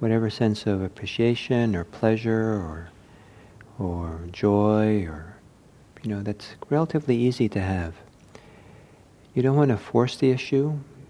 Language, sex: English, male